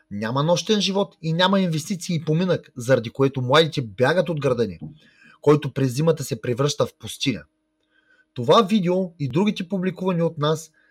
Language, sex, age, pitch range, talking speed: Bulgarian, male, 30-49, 135-190 Hz, 155 wpm